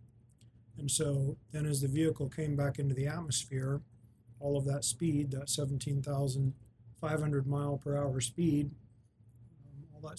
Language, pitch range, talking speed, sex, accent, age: English, 125-145 Hz, 140 wpm, male, American, 40-59